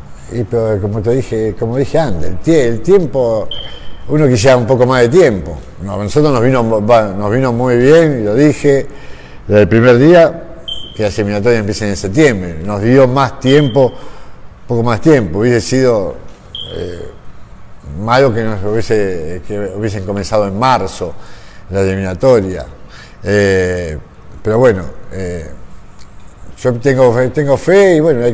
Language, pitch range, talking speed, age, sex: Spanish, 100-130 Hz, 145 wpm, 50-69, male